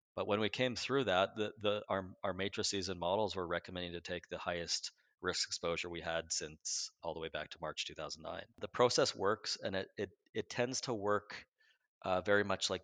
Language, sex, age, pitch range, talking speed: English, male, 30-49, 85-105 Hz, 195 wpm